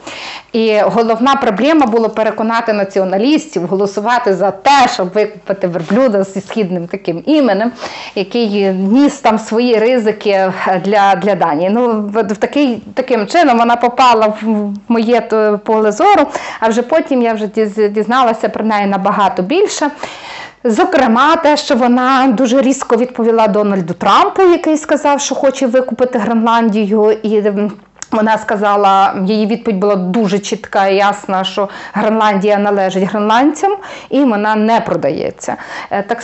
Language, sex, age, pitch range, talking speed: Ukrainian, female, 30-49, 205-245 Hz, 130 wpm